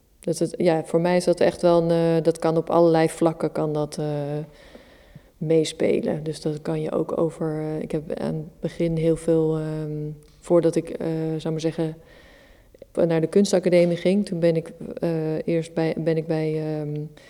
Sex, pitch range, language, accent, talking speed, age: female, 155-170 Hz, Dutch, Dutch, 185 wpm, 20-39